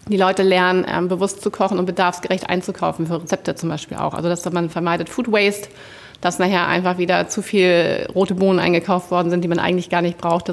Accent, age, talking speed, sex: German, 30-49, 215 wpm, female